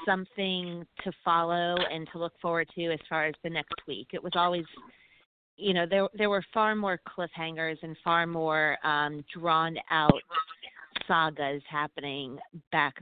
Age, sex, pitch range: 30-49, female, 155-175 Hz